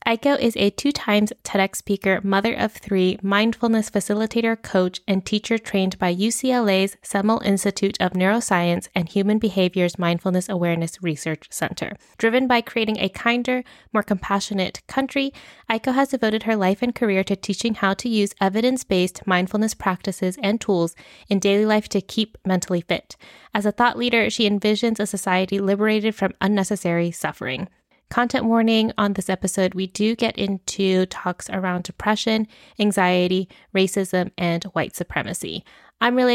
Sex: female